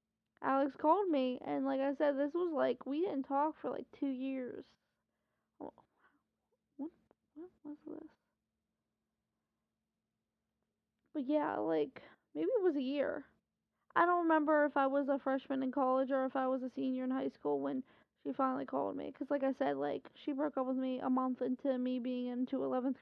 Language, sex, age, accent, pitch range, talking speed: English, female, 20-39, American, 265-330 Hz, 180 wpm